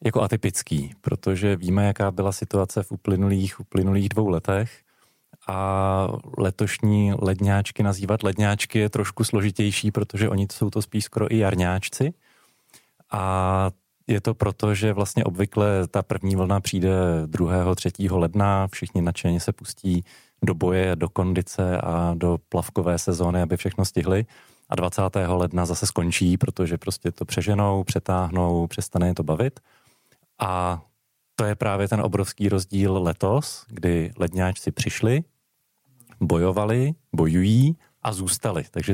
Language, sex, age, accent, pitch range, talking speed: Czech, male, 30-49, native, 90-105 Hz, 135 wpm